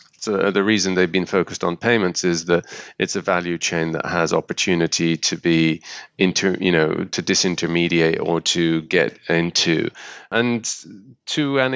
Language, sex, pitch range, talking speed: English, male, 85-100 Hz, 160 wpm